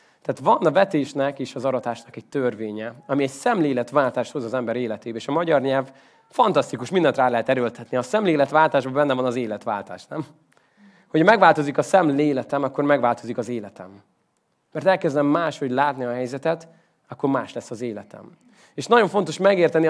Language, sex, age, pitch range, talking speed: Hungarian, male, 20-39, 130-180 Hz, 165 wpm